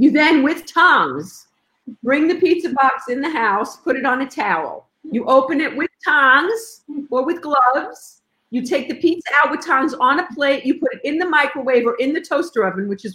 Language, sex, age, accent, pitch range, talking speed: English, female, 50-69, American, 200-265 Hz, 215 wpm